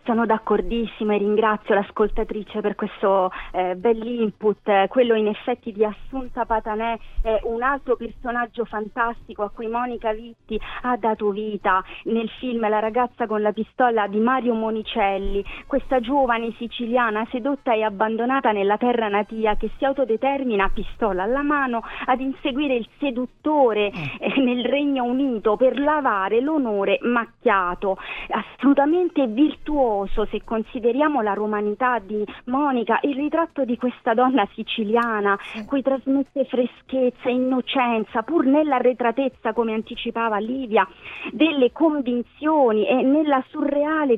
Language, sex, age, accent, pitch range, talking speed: Italian, female, 30-49, native, 215-265 Hz, 130 wpm